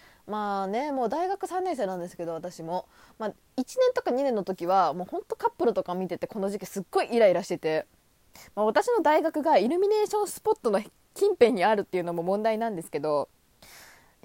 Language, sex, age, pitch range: Japanese, female, 20-39, 185-305 Hz